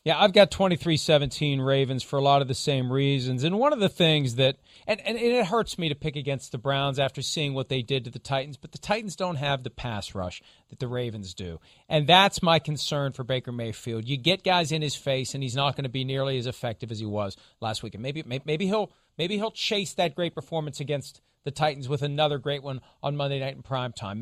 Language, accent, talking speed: English, American, 245 wpm